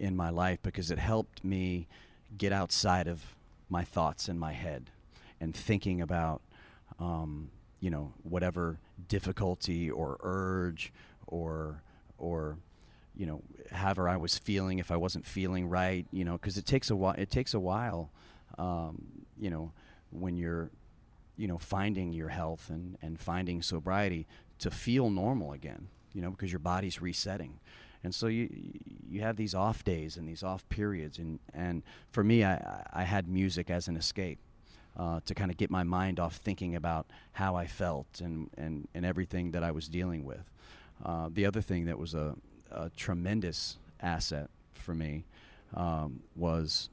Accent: American